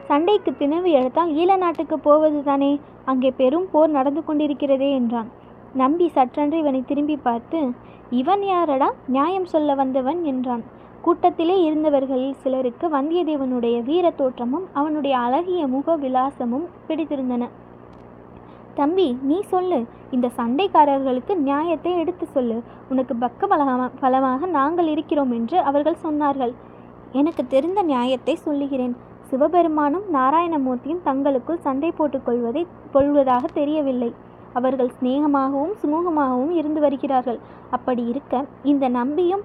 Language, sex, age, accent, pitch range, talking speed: Tamil, female, 20-39, native, 260-315 Hz, 105 wpm